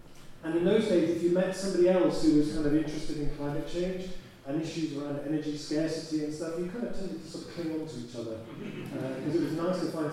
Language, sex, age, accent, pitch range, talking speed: English, male, 30-49, British, 145-185 Hz, 255 wpm